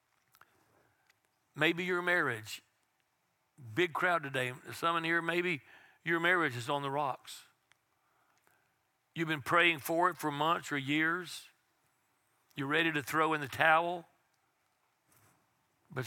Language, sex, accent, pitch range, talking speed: English, male, American, 145-175 Hz, 120 wpm